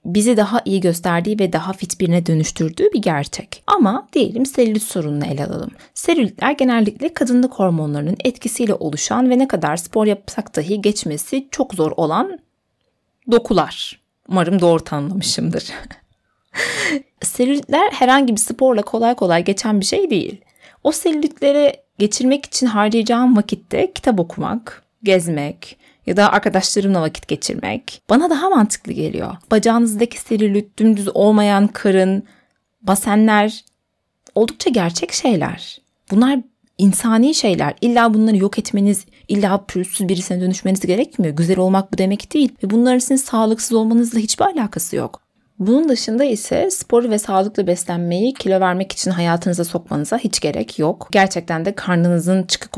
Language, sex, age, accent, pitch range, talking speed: Turkish, female, 30-49, native, 180-240 Hz, 135 wpm